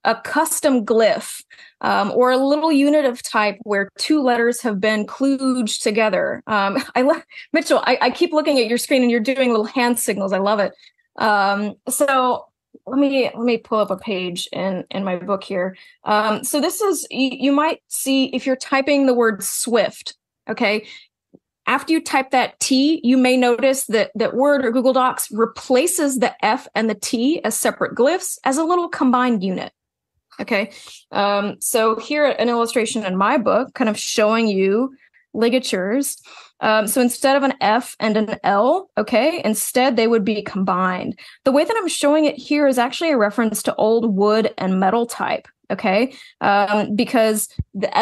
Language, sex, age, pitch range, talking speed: English, female, 20-39, 215-280 Hz, 180 wpm